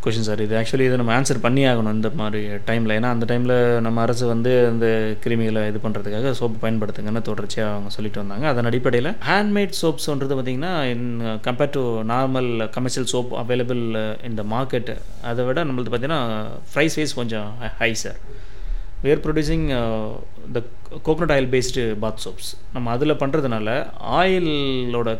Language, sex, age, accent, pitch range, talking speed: Tamil, male, 30-49, native, 110-145 Hz, 150 wpm